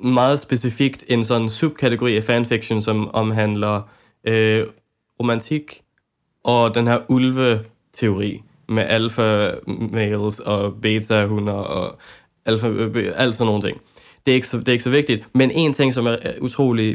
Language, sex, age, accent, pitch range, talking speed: Danish, male, 20-39, native, 110-125 Hz, 140 wpm